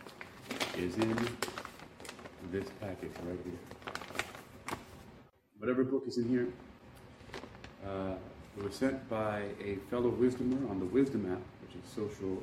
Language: English